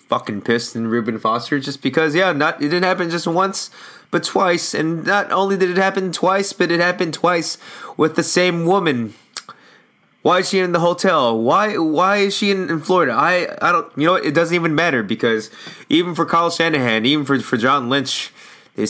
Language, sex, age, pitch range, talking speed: English, male, 20-39, 110-150 Hz, 205 wpm